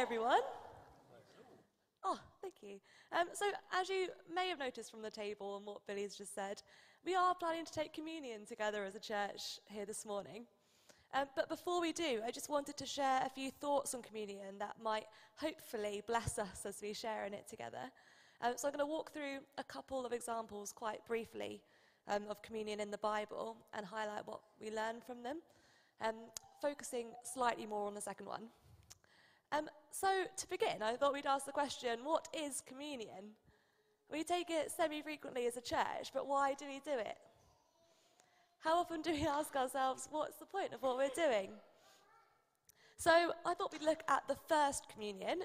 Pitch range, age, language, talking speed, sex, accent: 220-315 Hz, 20-39, English, 185 wpm, female, British